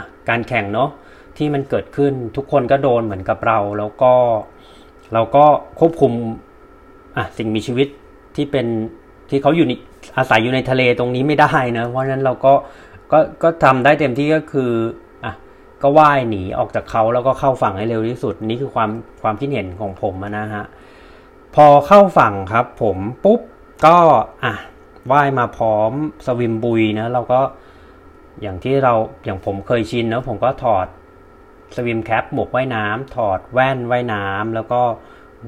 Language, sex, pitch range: Thai, male, 110-140 Hz